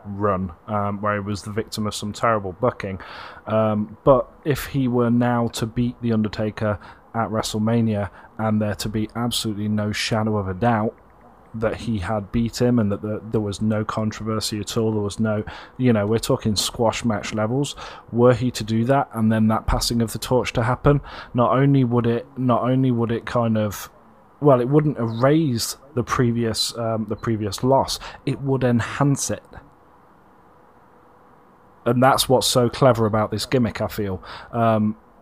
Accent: British